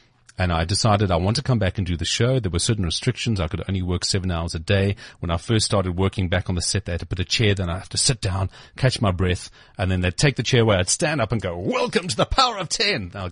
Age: 40-59